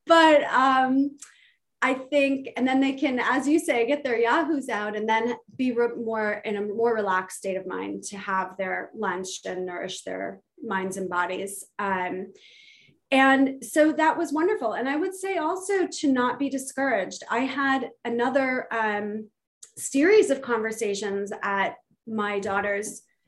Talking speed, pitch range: 155 wpm, 200-270 Hz